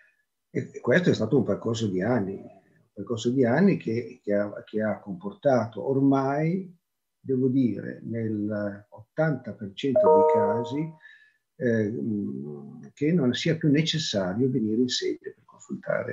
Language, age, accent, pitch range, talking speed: Italian, 50-69, native, 100-155 Hz, 135 wpm